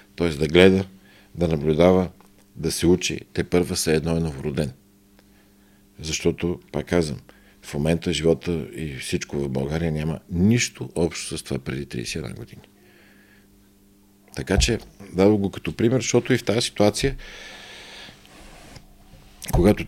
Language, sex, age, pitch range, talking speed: Bulgarian, male, 50-69, 80-100 Hz, 130 wpm